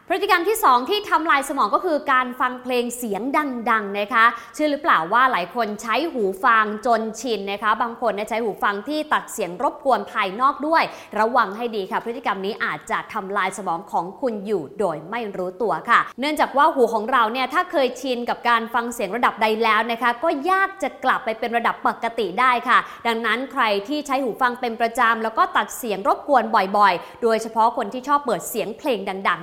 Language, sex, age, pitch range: English, female, 20-39, 210-265 Hz